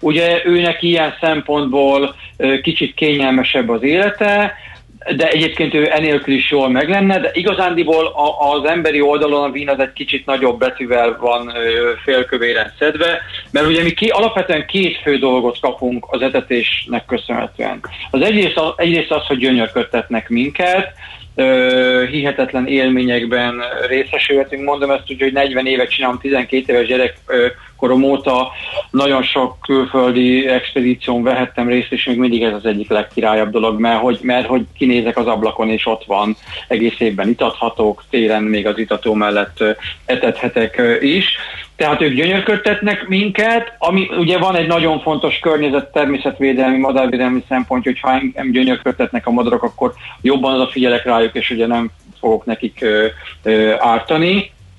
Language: Hungarian